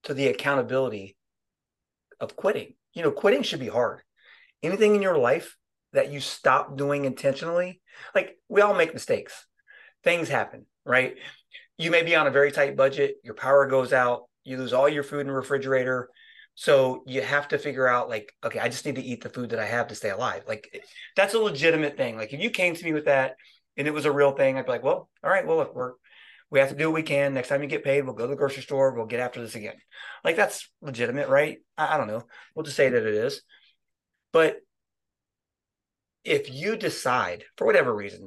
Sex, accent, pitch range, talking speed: male, American, 130-170 Hz, 220 wpm